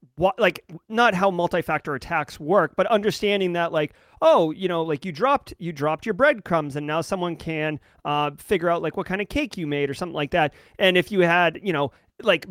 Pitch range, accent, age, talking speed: 160-205 Hz, American, 30-49, 215 wpm